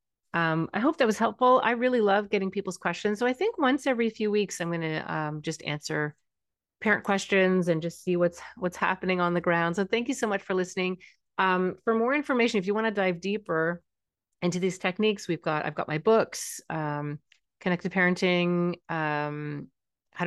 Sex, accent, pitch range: female, American, 155-190 Hz